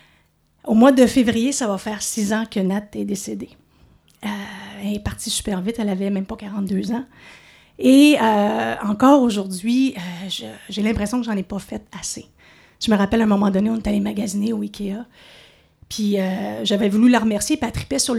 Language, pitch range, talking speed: French, 200-245 Hz, 200 wpm